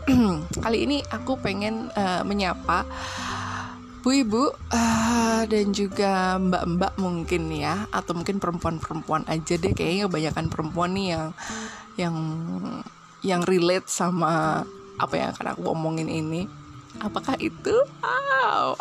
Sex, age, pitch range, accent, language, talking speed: female, 20-39, 175-245 Hz, native, Indonesian, 115 wpm